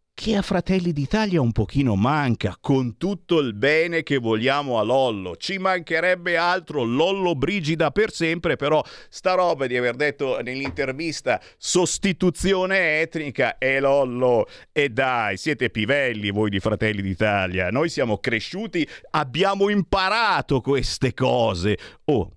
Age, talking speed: 50-69, 130 wpm